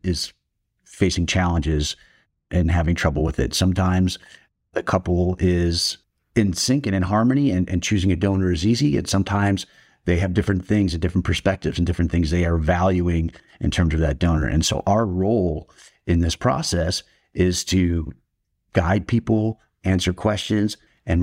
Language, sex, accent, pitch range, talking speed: English, male, American, 85-100 Hz, 165 wpm